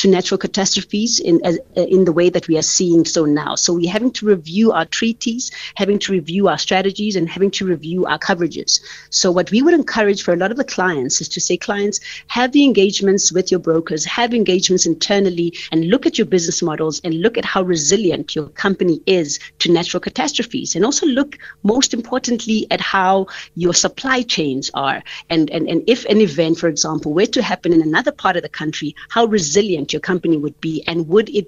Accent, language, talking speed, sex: South African, English, 210 wpm, female